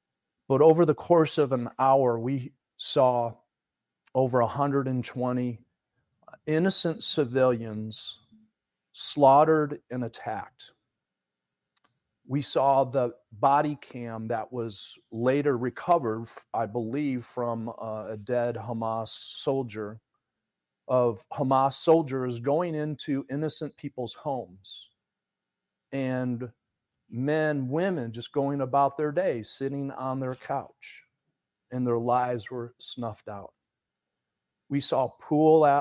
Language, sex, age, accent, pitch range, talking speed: English, male, 40-59, American, 120-145 Hz, 100 wpm